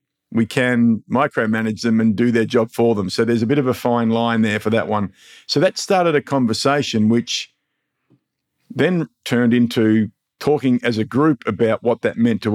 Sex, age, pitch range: male, 50-69, 110-125 Hz